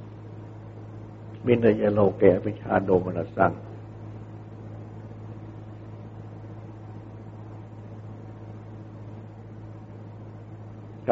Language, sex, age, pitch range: Thai, male, 60-79, 105-110 Hz